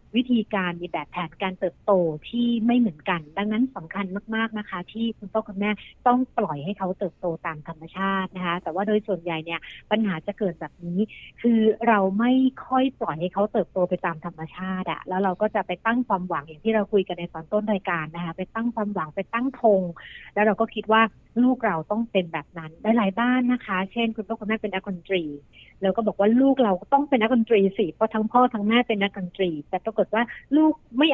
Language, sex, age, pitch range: Thai, female, 60-79, 180-225 Hz